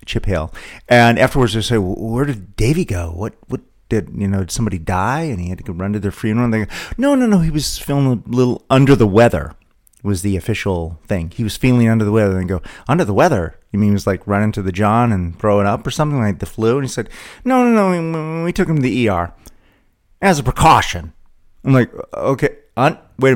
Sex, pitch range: male, 95-130 Hz